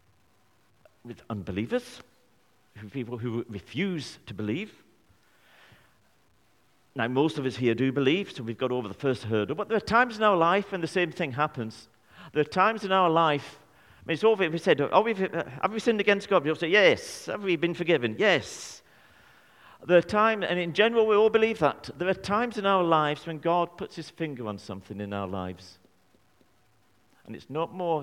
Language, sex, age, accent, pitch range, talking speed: English, male, 50-69, British, 105-170 Hz, 195 wpm